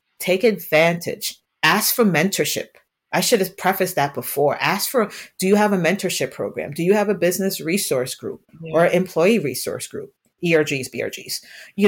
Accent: American